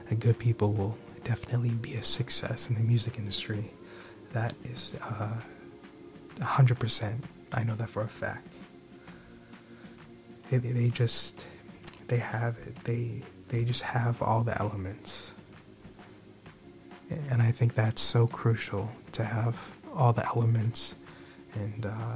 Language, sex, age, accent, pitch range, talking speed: English, male, 20-39, American, 110-125 Hz, 125 wpm